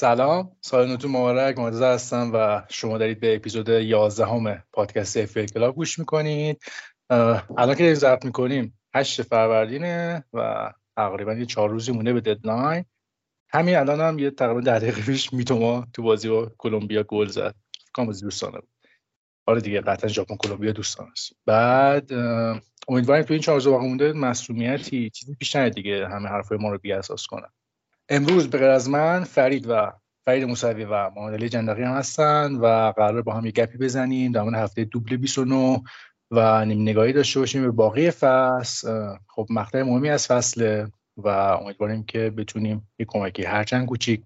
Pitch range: 110-130 Hz